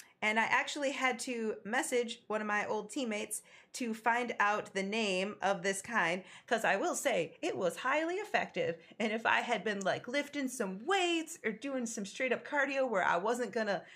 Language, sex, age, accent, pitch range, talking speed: English, female, 30-49, American, 215-290 Hz, 200 wpm